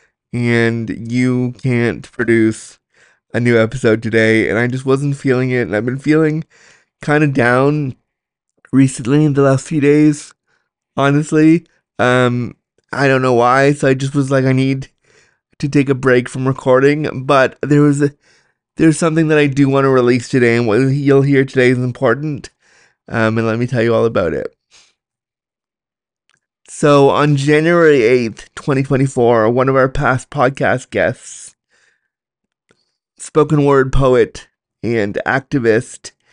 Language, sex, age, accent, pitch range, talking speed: English, male, 20-39, American, 115-140 Hz, 150 wpm